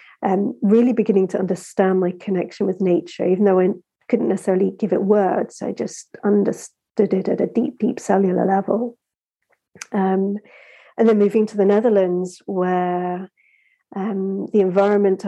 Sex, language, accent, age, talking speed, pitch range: female, English, British, 40-59, 150 wpm, 185-220 Hz